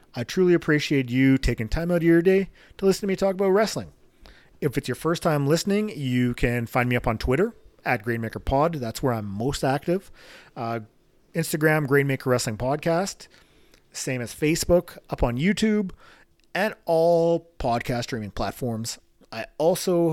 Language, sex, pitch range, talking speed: English, male, 120-165 Hz, 165 wpm